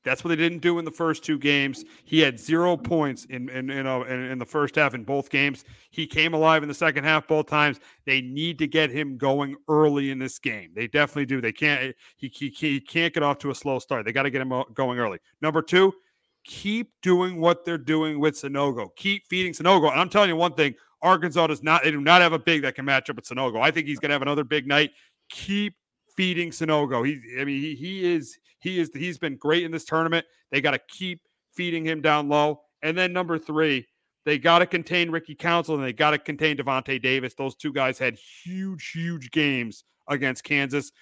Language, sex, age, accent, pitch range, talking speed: English, male, 40-59, American, 140-180 Hz, 230 wpm